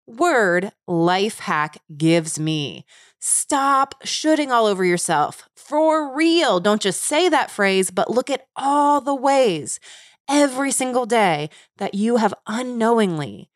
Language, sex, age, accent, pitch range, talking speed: English, female, 30-49, American, 170-240 Hz, 135 wpm